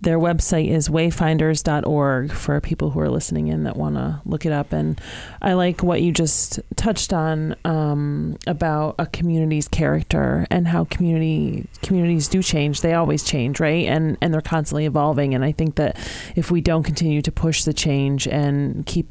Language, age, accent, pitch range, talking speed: English, 30-49, American, 140-170 Hz, 180 wpm